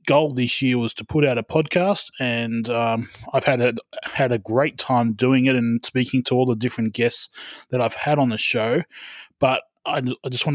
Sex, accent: male, Australian